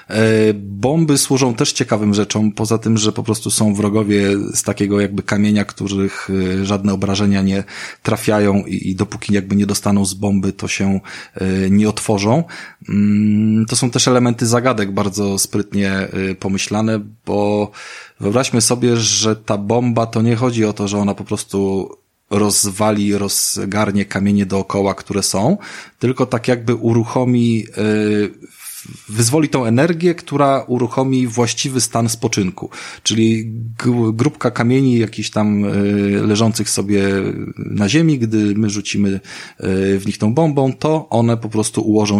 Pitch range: 100-115 Hz